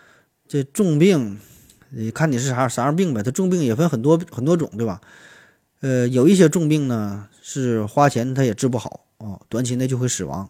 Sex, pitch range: male, 110-140 Hz